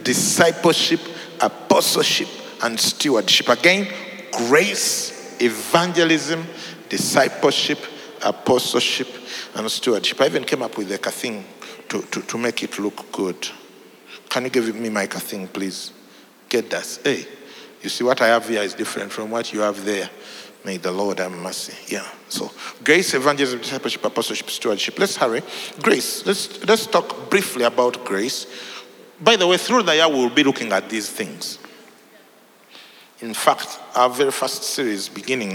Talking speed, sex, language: 150 wpm, male, English